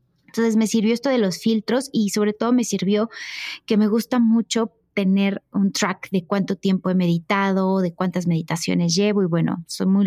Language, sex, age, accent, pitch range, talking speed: Spanish, female, 20-39, Mexican, 195-250 Hz, 190 wpm